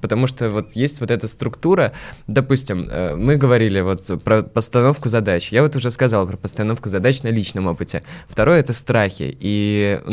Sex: male